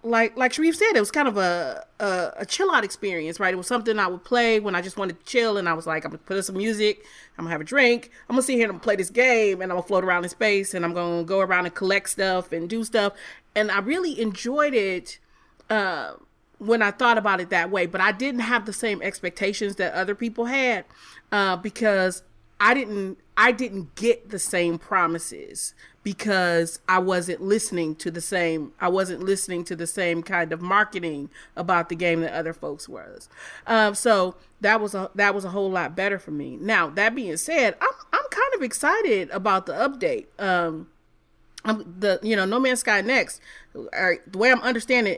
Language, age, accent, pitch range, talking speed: English, 30-49, American, 180-230 Hz, 215 wpm